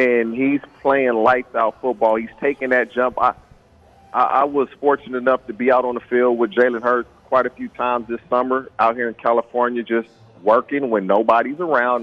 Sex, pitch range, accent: male, 115-145 Hz, American